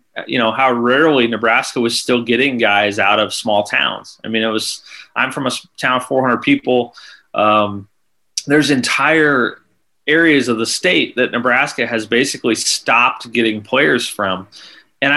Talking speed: 160 wpm